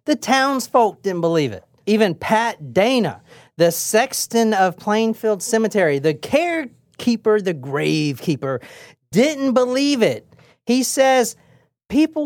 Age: 40-59